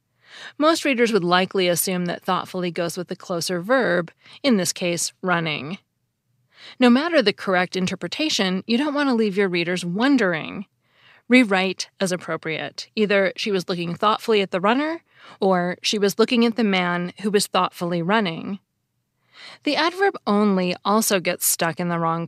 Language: English